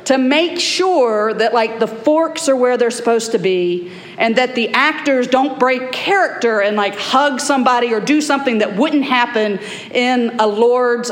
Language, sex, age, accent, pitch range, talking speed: English, female, 50-69, American, 220-280 Hz, 180 wpm